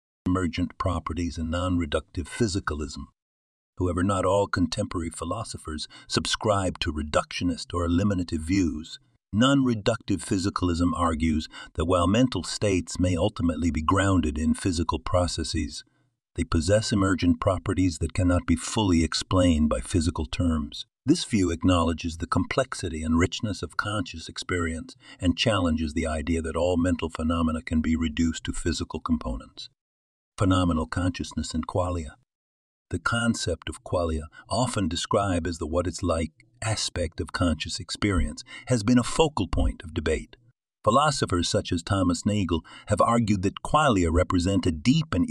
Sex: male